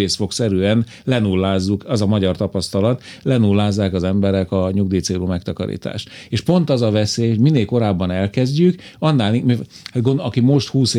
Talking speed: 135 wpm